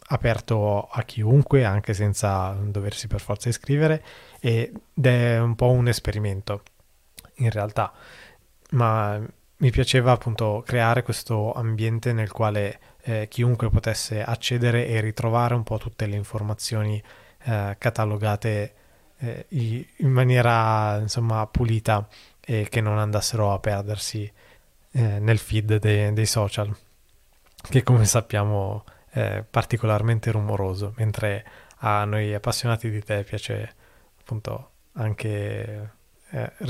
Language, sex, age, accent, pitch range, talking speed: Italian, male, 20-39, native, 105-120 Hz, 115 wpm